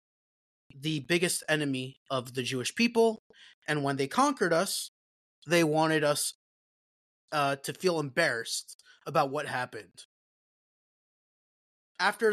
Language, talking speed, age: English, 110 wpm, 20-39